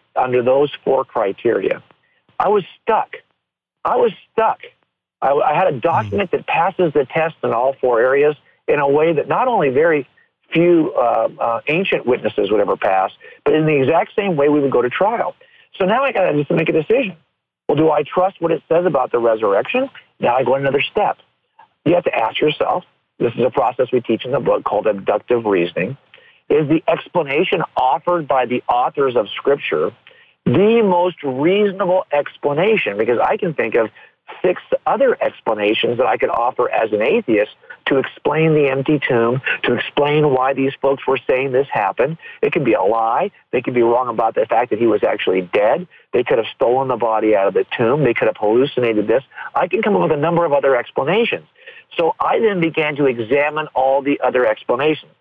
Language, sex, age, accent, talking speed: English, male, 50-69, American, 200 wpm